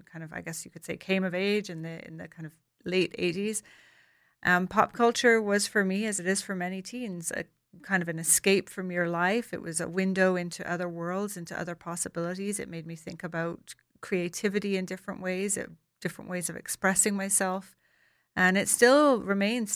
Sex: female